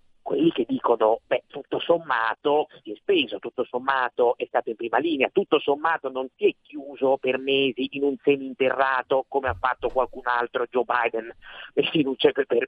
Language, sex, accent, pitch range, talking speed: Italian, male, native, 125-165 Hz, 175 wpm